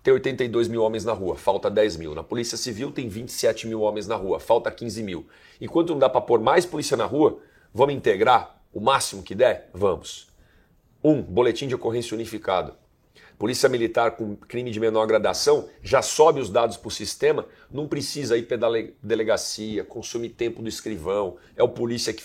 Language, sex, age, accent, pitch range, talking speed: Portuguese, male, 40-59, Brazilian, 110-170 Hz, 185 wpm